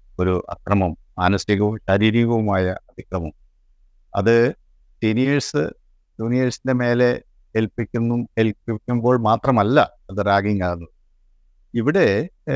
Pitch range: 90-110 Hz